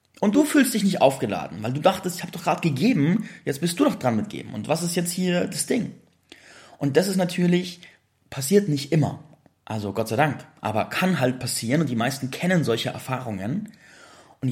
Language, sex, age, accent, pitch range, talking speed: German, male, 30-49, German, 120-165 Hz, 205 wpm